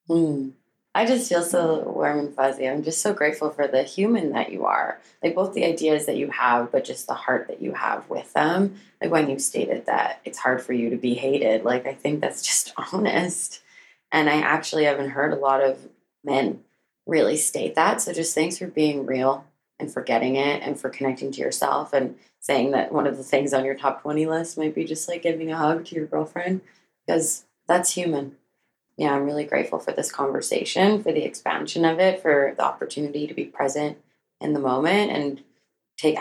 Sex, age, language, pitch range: female, 20-39, English, 135-170 Hz